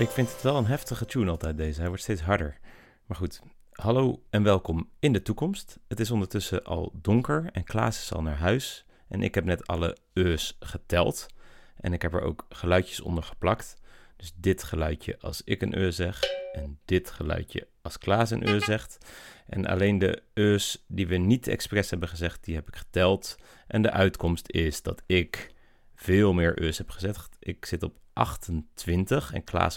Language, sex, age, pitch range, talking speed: Dutch, male, 30-49, 85-110 Hz, 190 wpm